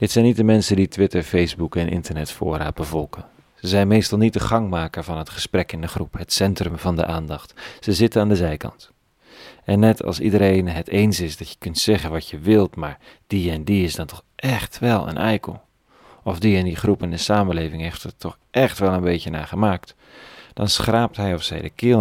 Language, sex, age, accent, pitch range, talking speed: Dutch, male, 40-59, Dutch, 85-105 Hz, 225 wpm